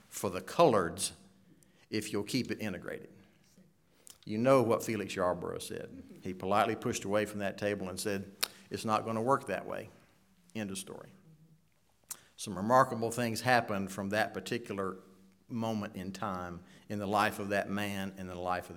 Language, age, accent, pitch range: English, 50-69, American, 100-120 Hz